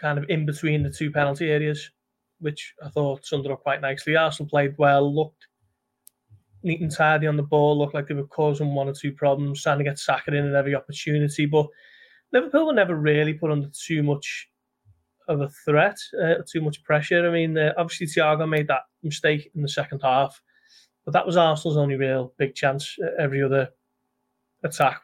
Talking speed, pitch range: 195 wpm, 140-155 Hz